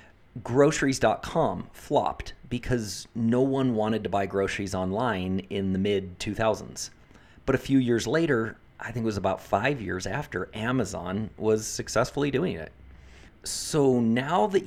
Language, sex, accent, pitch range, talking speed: English, male, American, 100-130 Hz, 140 wpm